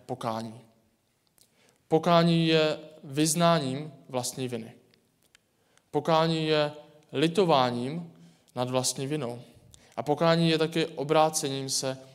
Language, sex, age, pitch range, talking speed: Czech, male, 20-39, 130-160 Hz, 90 wpm